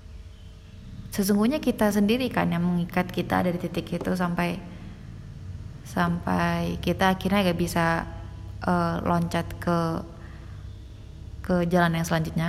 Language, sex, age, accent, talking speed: Indonesian, female, 20-39, native, 110 wpm